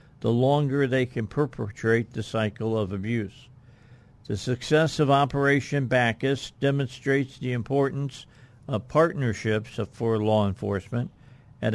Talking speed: 115 wpm